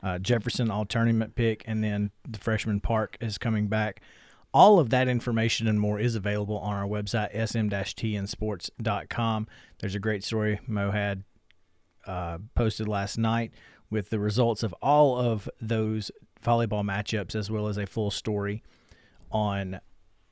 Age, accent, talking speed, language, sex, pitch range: 30-49, American, 150 wpm, English, male, 105-125 Hz